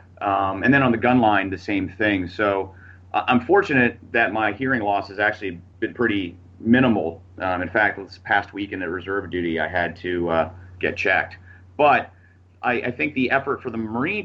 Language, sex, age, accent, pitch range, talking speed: English, male, 30-49, American, 90-115 Hz, 200 wpm